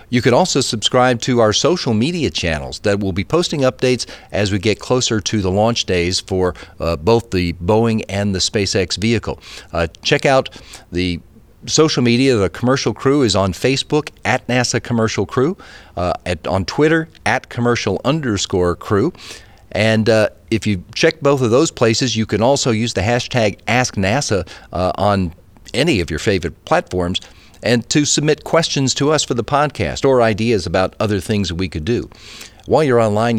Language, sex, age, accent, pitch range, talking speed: English, male, 40-59, American, 95-125 Hz, 175 wpm